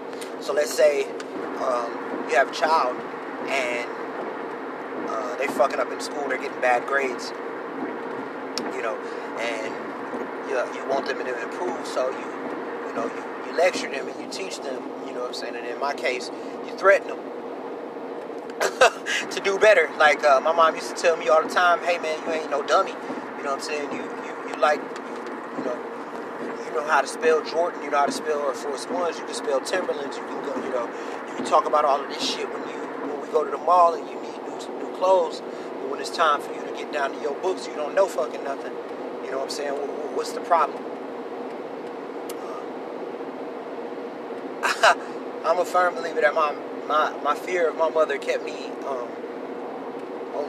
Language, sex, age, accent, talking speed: English, male, 30-49, American, 205 wpm